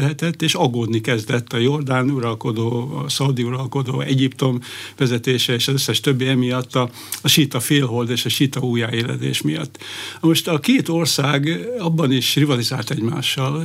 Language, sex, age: Hungarian, male, 60-79